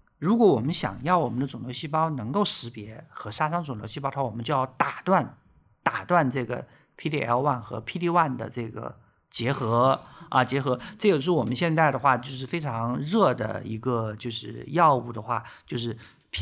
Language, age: Chinese, 50-69